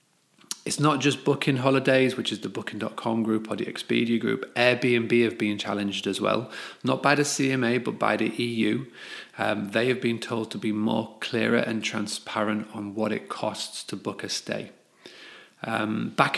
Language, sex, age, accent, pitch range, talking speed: English, male, 30-49, British, 105-130 Hz, 180 wpm